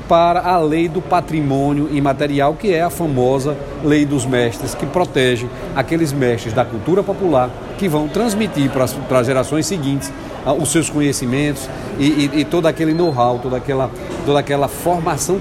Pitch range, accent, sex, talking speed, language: 130-160 Hz, Brazilian, male, 155 wpm, Portuguese